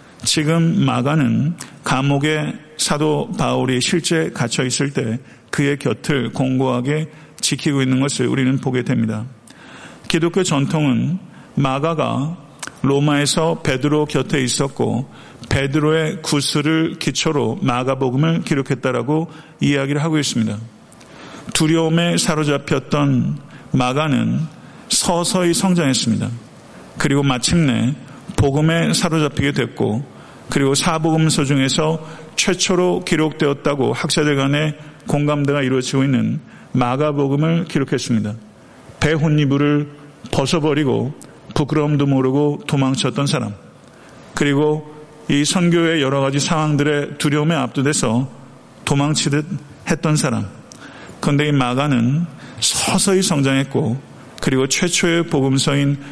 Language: Korean